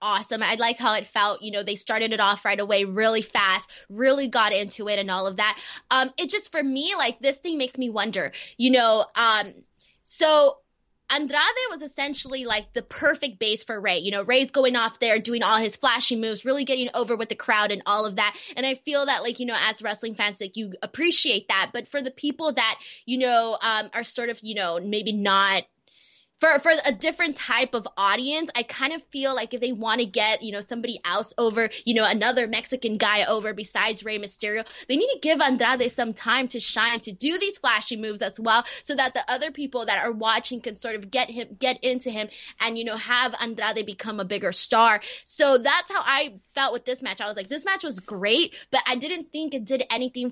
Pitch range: 215-270 Hz